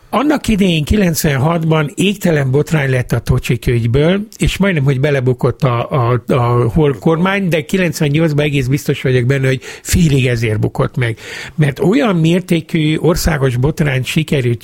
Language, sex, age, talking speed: Hungarian, male, 60-79, 140 wpm